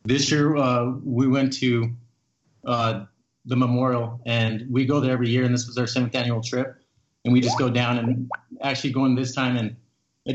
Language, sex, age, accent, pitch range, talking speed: English, male, 30-49, American, 115-130 Hz, 195 wpm